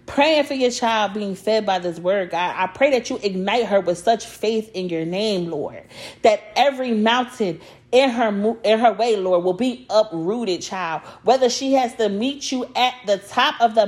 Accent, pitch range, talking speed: American, 195-255 Hz, 205 wpm